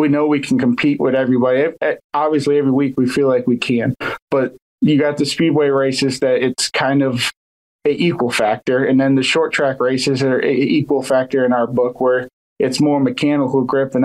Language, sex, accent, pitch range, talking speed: English, male, American, 125-140 Hz, 200 wpm